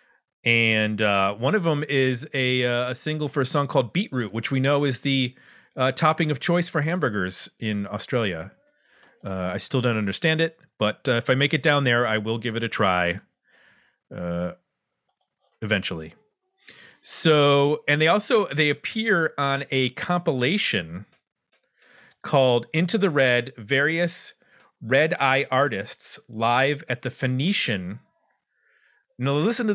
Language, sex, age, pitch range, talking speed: English, male, 40-59, 115-165 Hz, 145 wpm